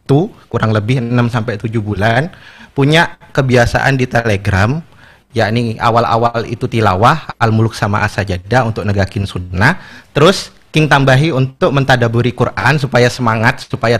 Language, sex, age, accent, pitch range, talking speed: Indonesian, male, 30-49, native, 105-130 Hz, 115 wpm